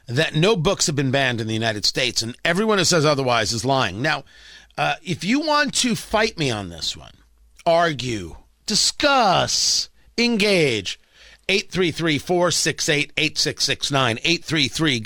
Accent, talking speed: American, 130 wpm